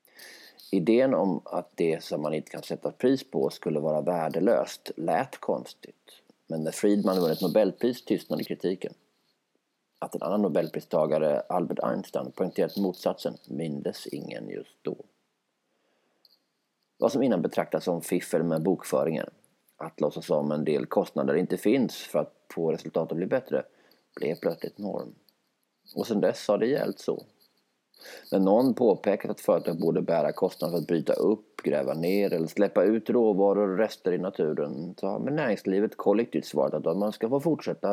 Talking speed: 160 wpm